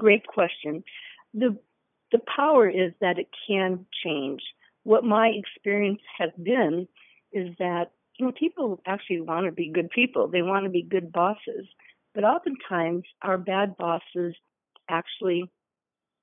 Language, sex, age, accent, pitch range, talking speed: English, female, 50-69, American, 175-220 Hz, 140 wpm